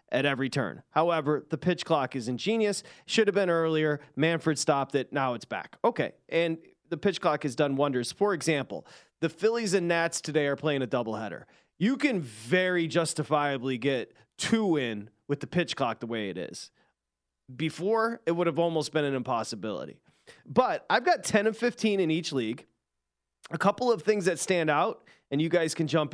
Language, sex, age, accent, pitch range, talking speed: English, male, 30-49, American, 140-185 Hz, 190 wpm